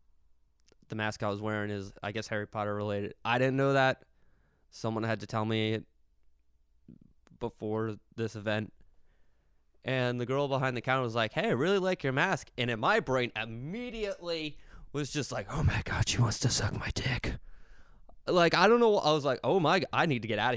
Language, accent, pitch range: English, American, 105-135 Hz